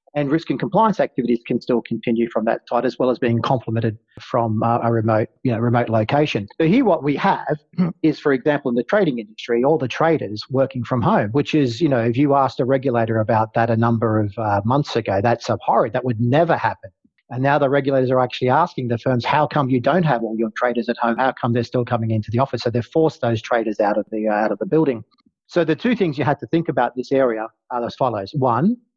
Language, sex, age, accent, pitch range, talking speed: English, male, 40-59, Australian, 120-150 Hz, 250 wpm